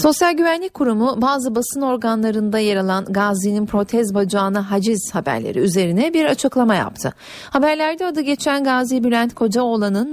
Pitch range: 200-265 Hz